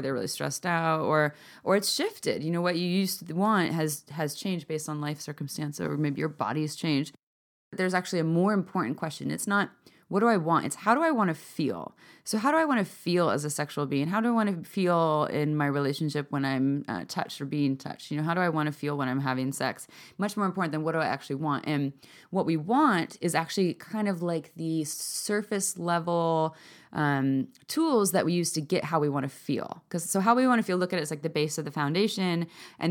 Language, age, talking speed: English, 20-39, 250 wpm